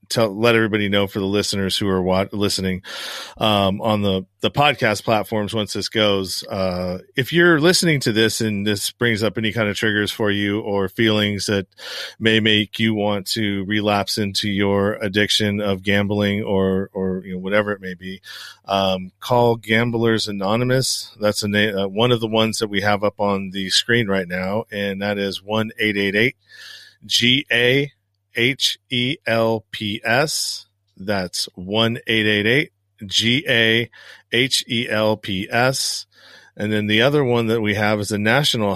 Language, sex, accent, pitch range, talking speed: English, male, American, 100-115 Hz, 160 wpm